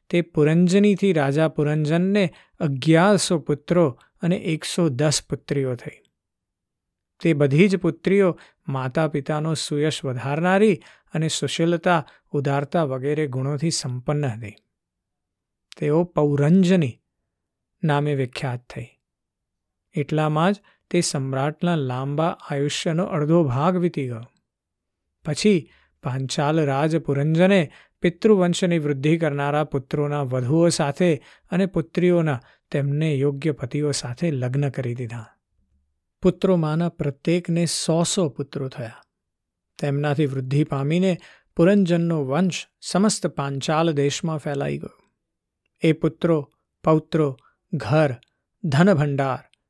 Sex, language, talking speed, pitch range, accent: male, Gujarati, 75 wpm, 140-170 Hz, native